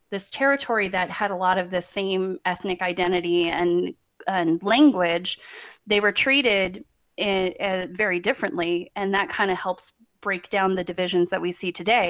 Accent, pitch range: American, 180-205 Hz